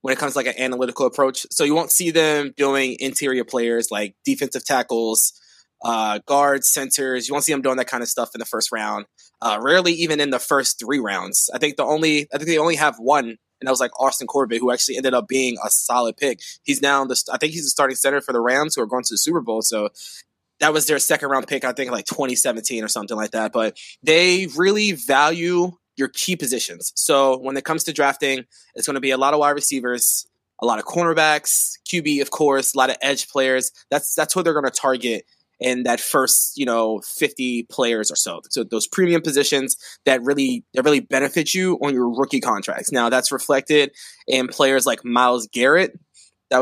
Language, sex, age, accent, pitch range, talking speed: English, male, 20-39, American, 125-145 Hz, 225 wpm